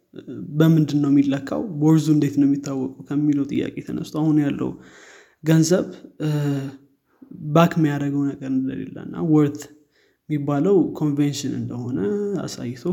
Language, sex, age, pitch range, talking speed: Amharic, male, 20-39, 140-155 Hz, 95 wpm